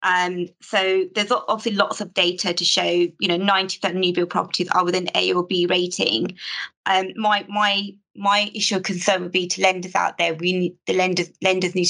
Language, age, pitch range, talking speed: English, 20-39, 175-195 Hz, 205 wpm